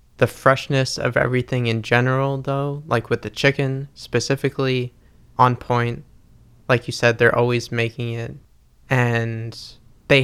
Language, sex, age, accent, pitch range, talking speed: English, male, 20-39, American, 115-130 Hz, 135 wpm